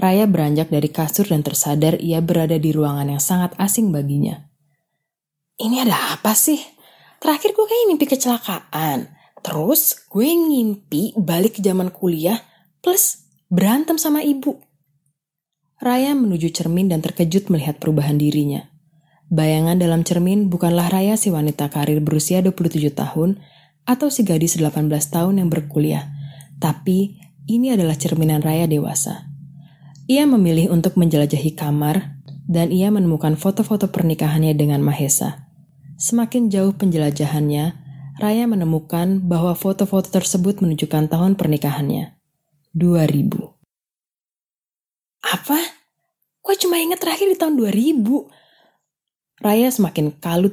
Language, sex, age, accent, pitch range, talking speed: Indonesian, female, 20-39, native, 150-200 Hz, 120 wpm